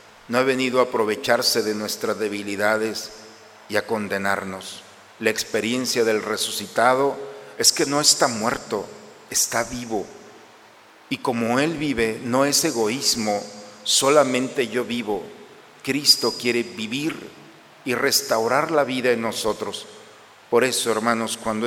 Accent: Mexican